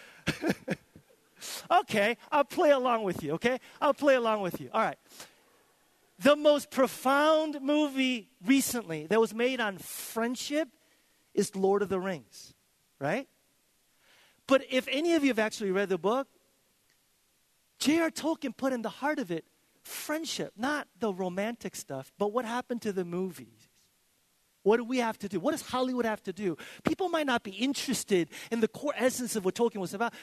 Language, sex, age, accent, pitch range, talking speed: English, male, 40-59, American, 170-255 Hz, 170 wpm